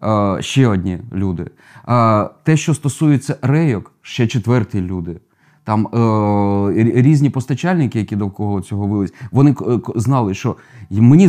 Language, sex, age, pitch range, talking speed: Ukrainian, male, 20-39, 100-130 Hz, 135 wpm